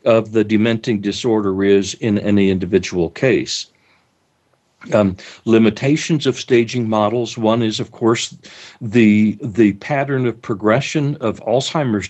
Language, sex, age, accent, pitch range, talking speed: English, male, 60-79, American, 100-125 Hz, 125 wpm